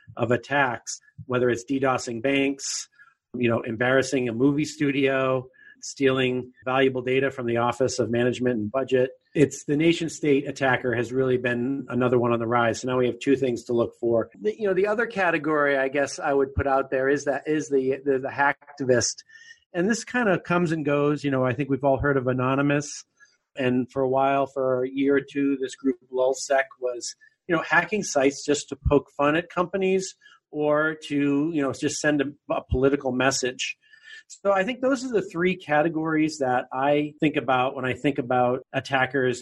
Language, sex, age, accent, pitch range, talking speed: English, male, 40-59, American, 130-155 Hz, 200 wpm